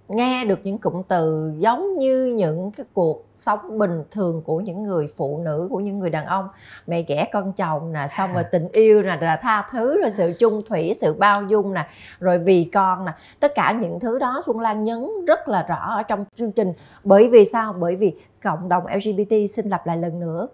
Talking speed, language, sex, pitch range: 220 wpm, Vietnamese, female, 175-225 Hz